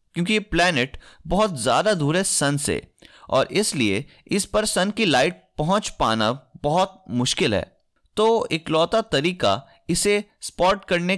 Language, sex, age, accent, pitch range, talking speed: Hindi, male, 20-39, native, 135-195 Hz, 140 wpm